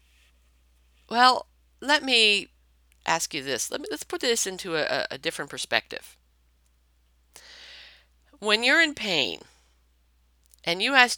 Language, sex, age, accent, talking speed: English, female, 50-69, American, 135 wpm